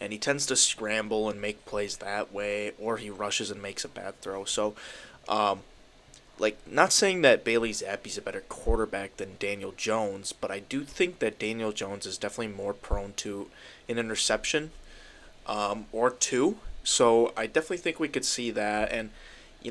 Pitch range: 100-125 Hz